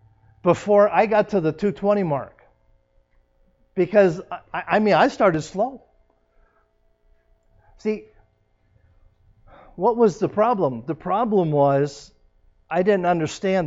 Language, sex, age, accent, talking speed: English, male, 50-69, American, 110 wpm